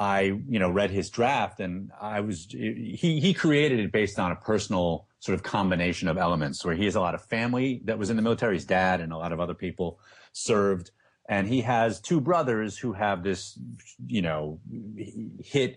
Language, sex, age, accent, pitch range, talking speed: English, male, 30-49, American, 90-115 Hz, 205 wpm